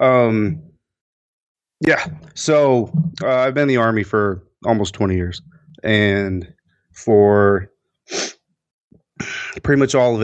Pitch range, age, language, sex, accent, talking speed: 100-120 Hz, 30-49, English, male, American, 110 wpm